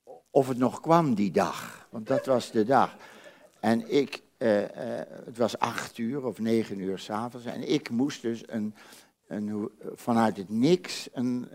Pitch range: 95-125 Hz